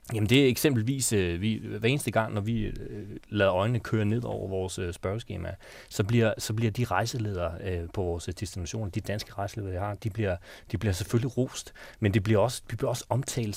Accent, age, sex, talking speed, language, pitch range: native, 30-49, male, 210 wpm, Danish, 95-115 Hz